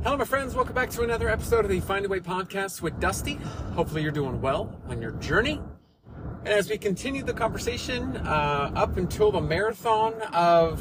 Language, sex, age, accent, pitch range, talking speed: English, male, 30-49, American, 155-220 Hz, 195 wpm